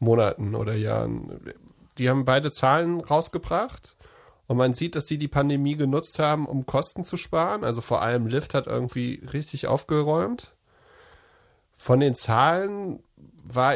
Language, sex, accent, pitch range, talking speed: German, male, German, 125-165 Hz, 145 wpm